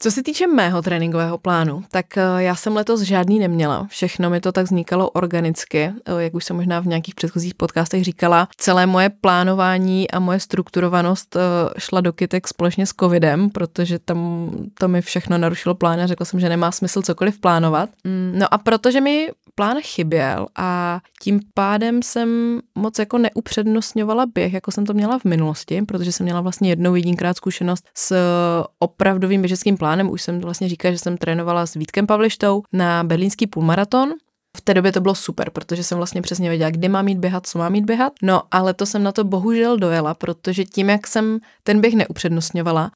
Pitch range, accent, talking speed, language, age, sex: 170-195 Hz, native, 185 wpm, Czech, 20-39, female